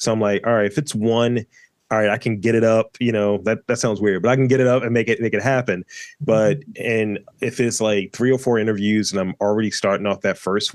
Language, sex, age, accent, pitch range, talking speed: English, male, 20-39, American, 100-130 Hz, 275 wpm